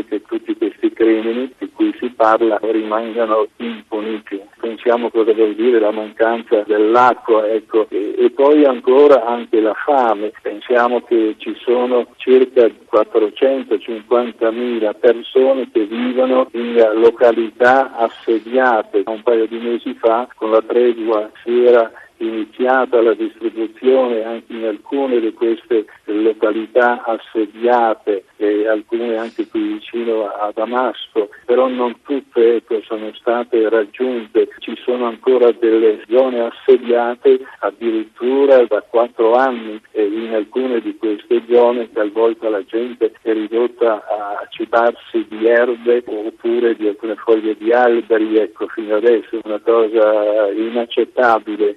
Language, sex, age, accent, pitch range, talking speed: Italian, male, 50-69, native, 110-135 Hz, 125 wpm